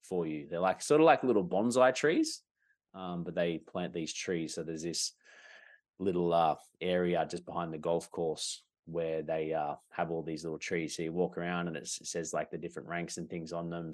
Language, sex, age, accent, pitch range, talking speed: English, male, 20-39, Australian, 80-90 Hz, 215 wpm